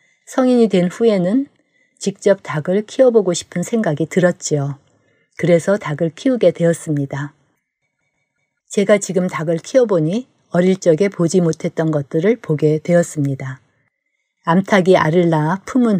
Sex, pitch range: female, 155-190 Hz